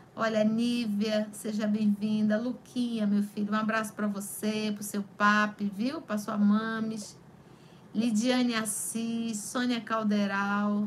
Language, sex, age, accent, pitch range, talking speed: Portuguese, female, 50-69, Brazilian, 210-260 Hz, 125 wpm